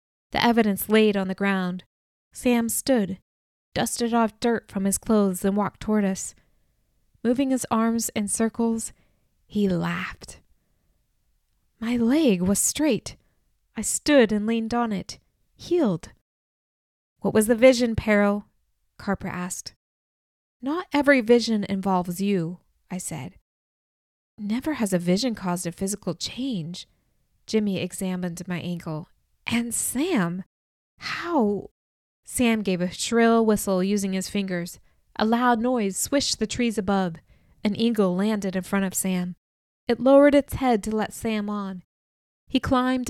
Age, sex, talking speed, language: 20-39, female, 135 wpm, English